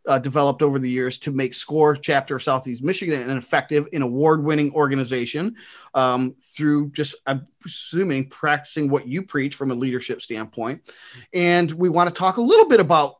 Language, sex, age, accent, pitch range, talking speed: English, male, 30-49, American, 135-170 Hz, 175 wpm